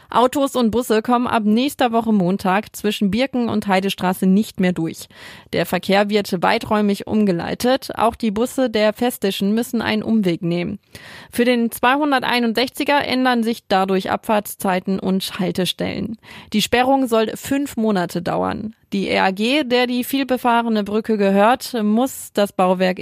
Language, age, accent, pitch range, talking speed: German, 20-39, German, 185-240 Hz, 140 wpm